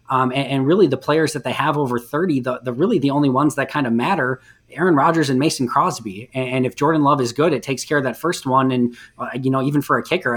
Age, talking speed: 20-39, 280 wpm